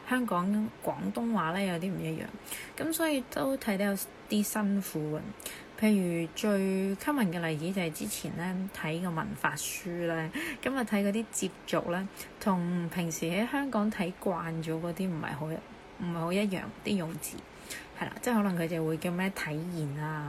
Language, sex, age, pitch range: Chinese, female, 20-39, 170-225 Hz